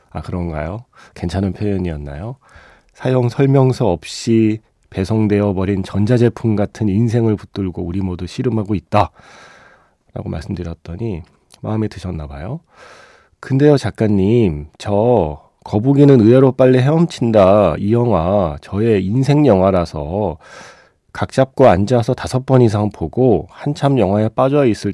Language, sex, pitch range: Korean, male, 95-130 Hz